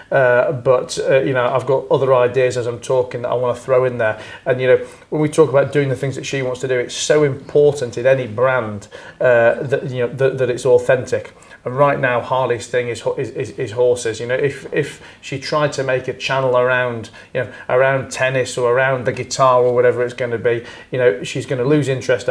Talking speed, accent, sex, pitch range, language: 240 wpm, British, male, 120-145 Hz, English